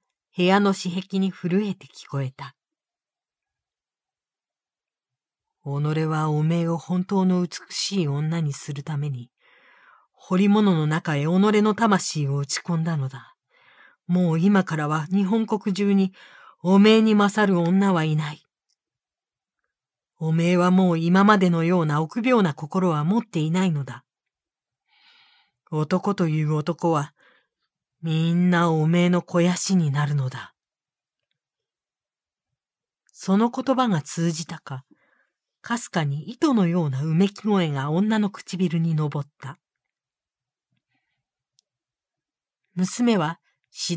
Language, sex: Japanese, female